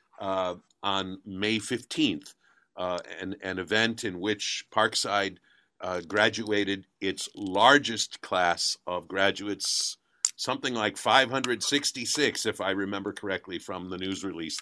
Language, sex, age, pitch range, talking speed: English, male, 50-69, 100-120 Hz, 120 wpm